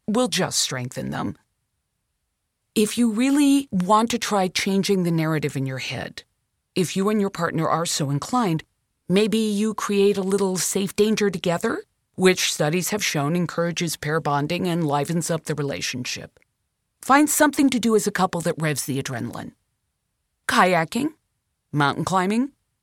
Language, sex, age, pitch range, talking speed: English, female, 40-59, 145-210 Hz, 150 wpm